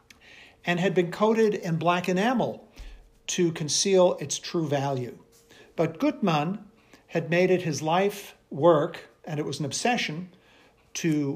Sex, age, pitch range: male, 50-69, 140-185 Hz